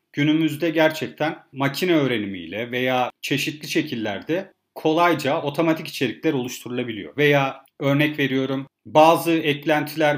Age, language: 40-59, Turkish